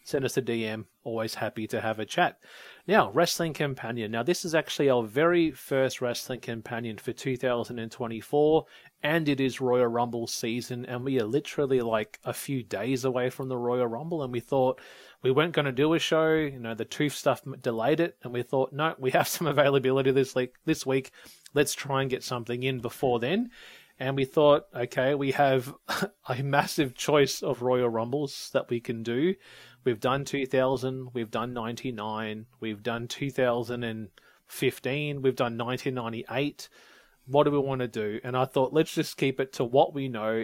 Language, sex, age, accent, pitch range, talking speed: English, male, 30-49, Australian, 120-145 Hz, 185 wpm